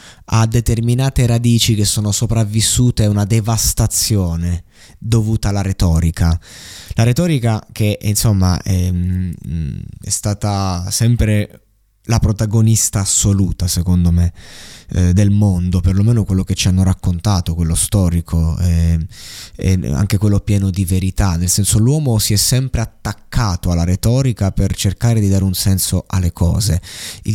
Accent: native